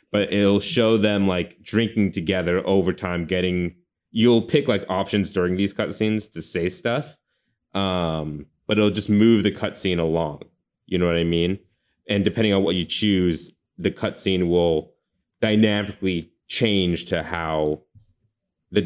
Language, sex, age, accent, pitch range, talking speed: English, male, 20-39, American, 85-105 Hz, 150 wpm